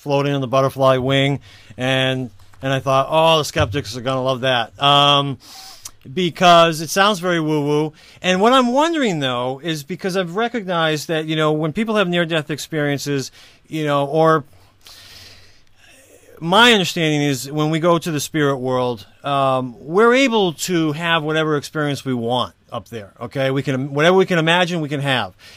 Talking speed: 175 wpm